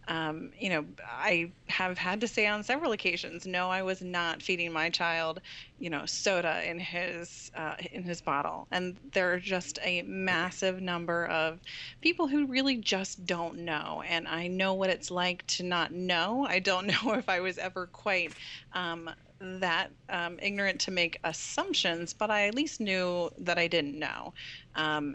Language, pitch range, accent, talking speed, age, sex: English, 160-190 Hz, American, 180 wpm, 30-49, female